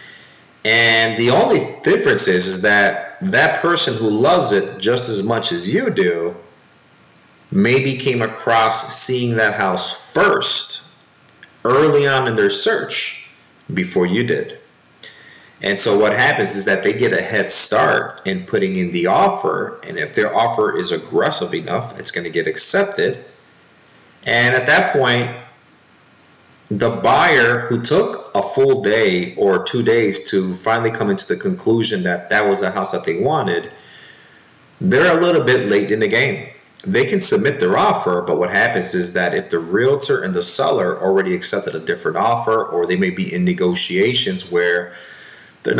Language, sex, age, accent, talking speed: English, male, 40-59, American, 165 wpm